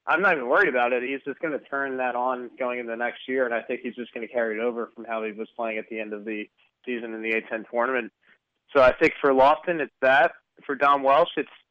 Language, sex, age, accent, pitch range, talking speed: English, male, 20-39, American, 115-135 Hz, 270 wpm